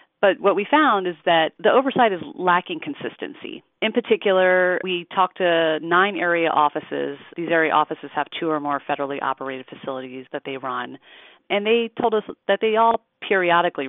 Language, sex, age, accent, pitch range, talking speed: English, female, 30-49, American, 140-180 Hz, 175 wpm